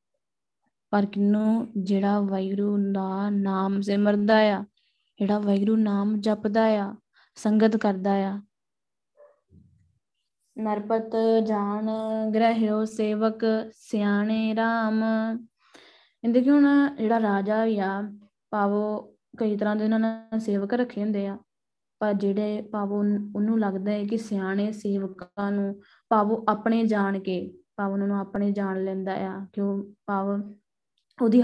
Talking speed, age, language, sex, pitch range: 105 wpm, 20-39, Punjabi, female, 200-220 Hz